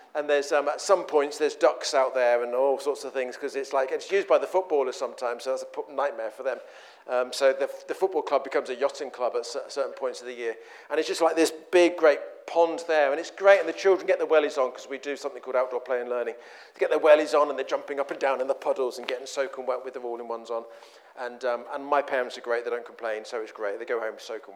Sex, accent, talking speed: male, British, 285 wpm